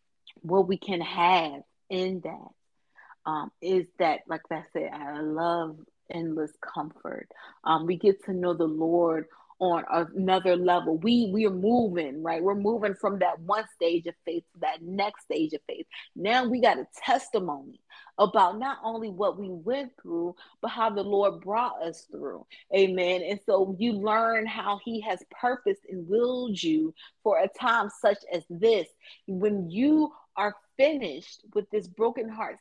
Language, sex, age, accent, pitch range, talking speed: English, female, 30-49, American, 180-235 Hz, 165 wpm